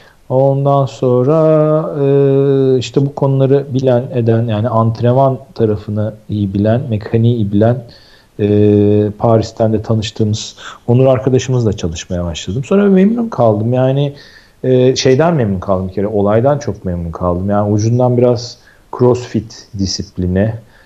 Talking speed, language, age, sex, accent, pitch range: 115 wpm, Turkish, 40-59, male, native, 100-130 Hz